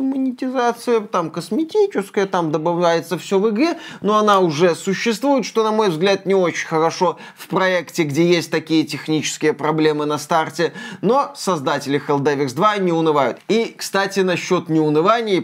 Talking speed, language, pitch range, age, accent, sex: 150 wpm, Russian, 160-215 Hz, 20-39, native, male